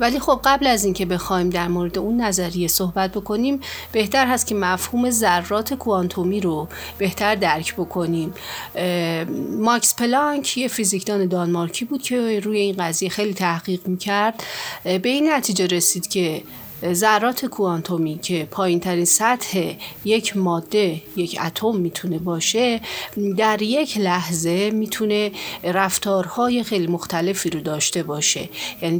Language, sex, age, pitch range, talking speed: Persian, female, 40-59, 175-220 Hz, 130 wpm